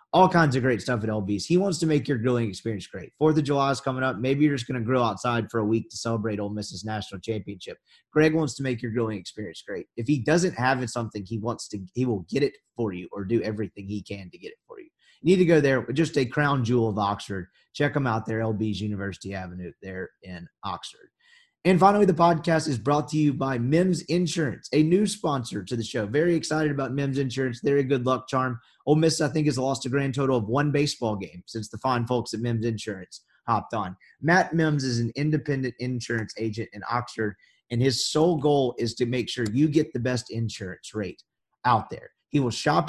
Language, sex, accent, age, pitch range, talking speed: English, male, American, 30-49, 110-150 Hz, 235 wpm